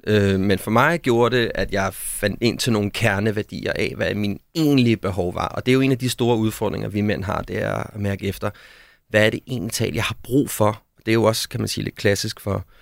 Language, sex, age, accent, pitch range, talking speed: Danish, male, 30-49, native, 95-115 Hz, 255 wpm